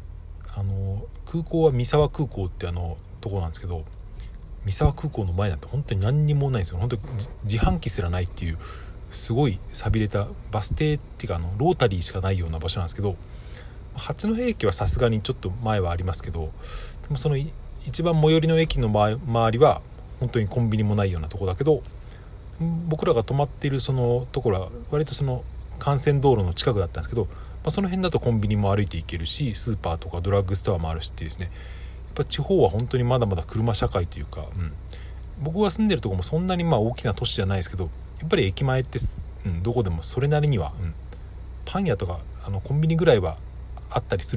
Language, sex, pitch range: Japanese, male, 85-125 Hz